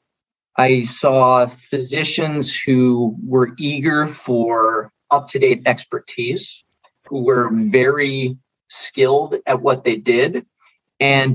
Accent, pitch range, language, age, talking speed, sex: American, 125-195 Hz, English, 40-59, 95 wpm, male